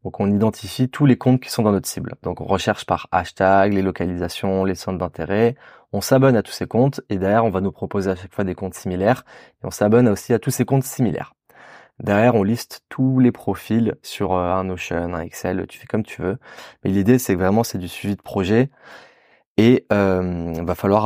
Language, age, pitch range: French, 20-39, 95-120 Hz